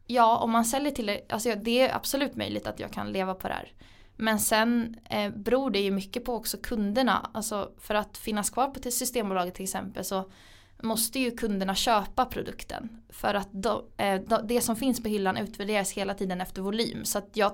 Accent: Swedish